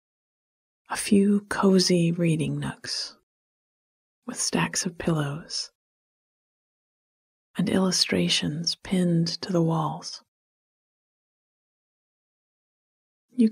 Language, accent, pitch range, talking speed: English, American, 160-195 Hz, 70 wpm